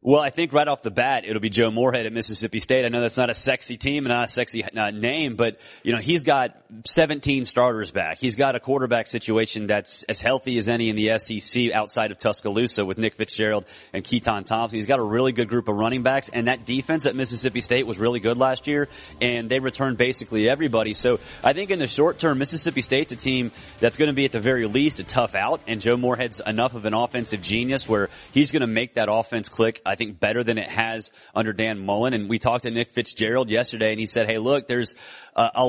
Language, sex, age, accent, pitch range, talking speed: English, male, 30-49, American, 110-130 Hz, 240 wpm